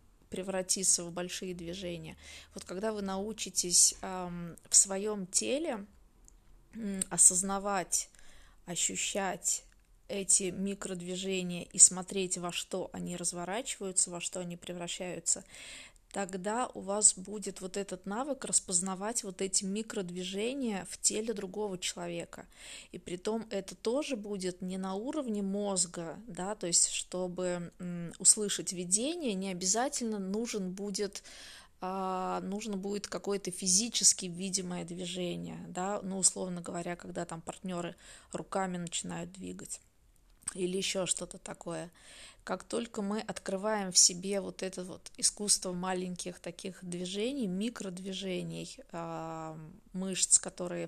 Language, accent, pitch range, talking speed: Russian, native, 180-205 Hz, 110 wpm